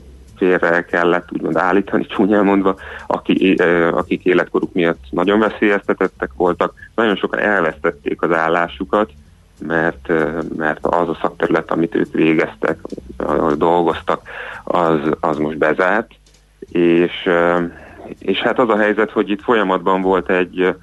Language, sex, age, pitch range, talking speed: Hungarian, male, 30-49, 80-100 Hz, 125 wpm